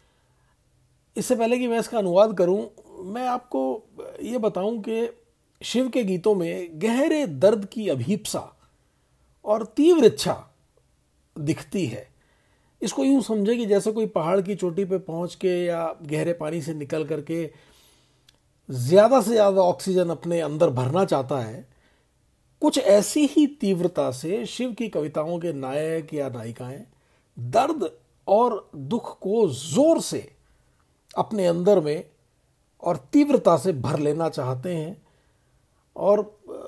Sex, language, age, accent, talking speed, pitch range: male, Hindi, 50-69, native, 135 wpm, 155-215 Hz